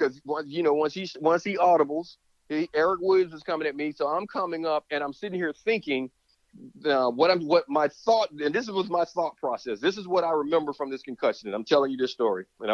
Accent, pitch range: American, 135-180 Hz